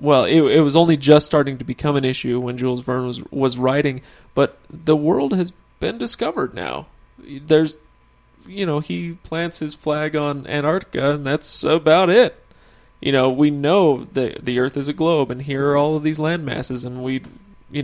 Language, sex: English, male